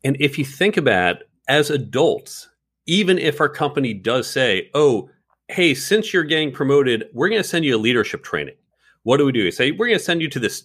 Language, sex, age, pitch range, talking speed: English, male, 40-59, 110-150 Hz, 225 wpm